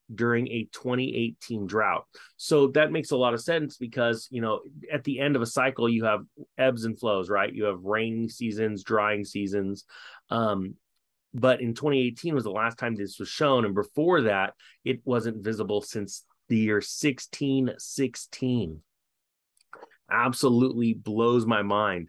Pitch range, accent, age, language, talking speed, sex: 110-135 Hz, American, 30-49, English, 155 wpm, male